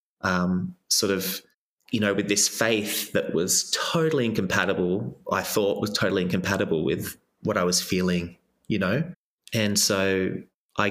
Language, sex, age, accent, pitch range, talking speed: English, male, 20-39, Australian, 90-105 Hz, 150 wpm